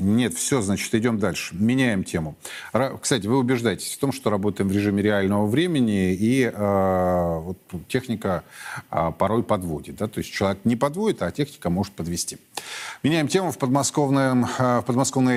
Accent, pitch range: native, 100-130 Hz